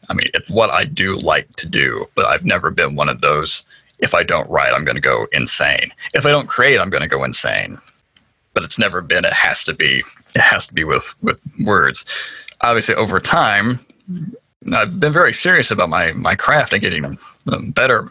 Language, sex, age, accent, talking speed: English, male, 30-49, American, 210 wpm